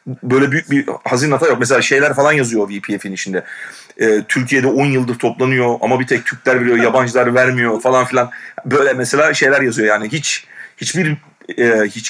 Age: 40-59